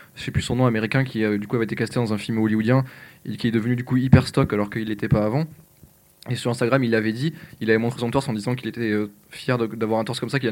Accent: French